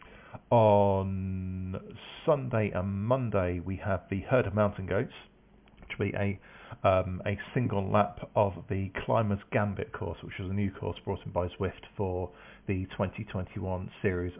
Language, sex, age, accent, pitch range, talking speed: English, male, 40-59, British, 95-110 Hz, 155 wpm